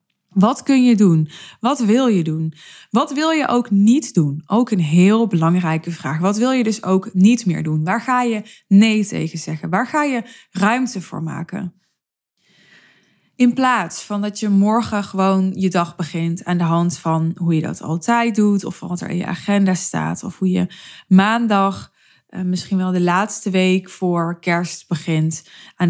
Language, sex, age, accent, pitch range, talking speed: Dutch, female, 20-39, Dutch, 175-215 Hz, 180 wpm